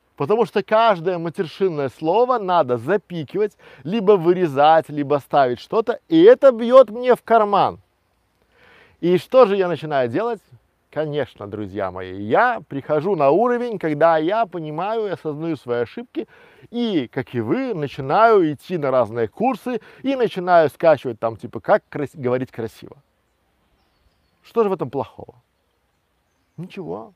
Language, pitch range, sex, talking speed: Russian, 130-195 Hz, male, 135 wpm